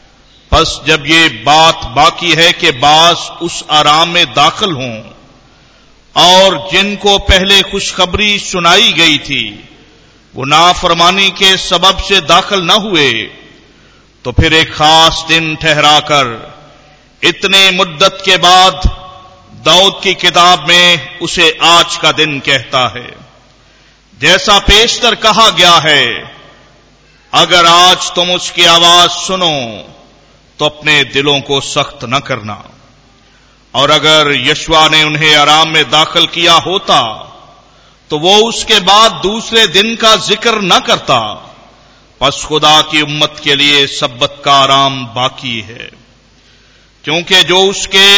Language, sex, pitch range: Hindi, male, 150-190 Hz